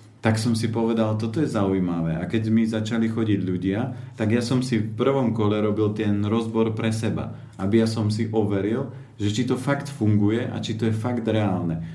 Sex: male